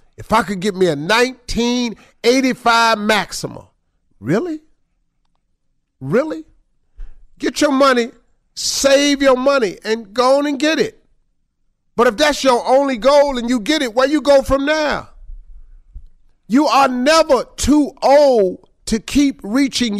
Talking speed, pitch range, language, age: 135 wpm, 175-250 Hz, English, 50-69